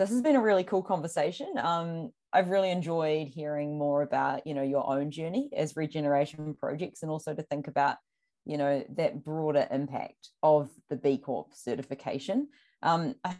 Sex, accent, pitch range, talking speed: female, Australian, 145-175 Hz, 175 wpm